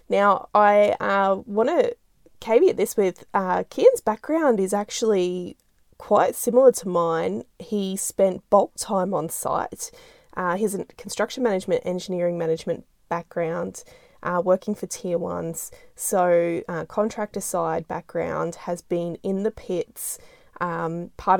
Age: 20-39